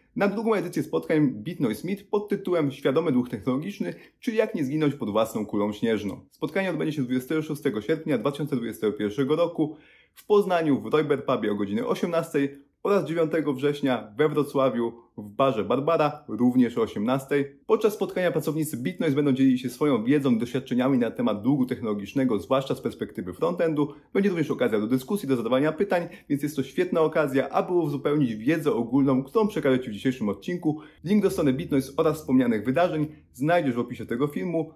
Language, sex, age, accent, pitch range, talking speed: Polish, male, 30-49, native, 125-165 Hz, 170 wpm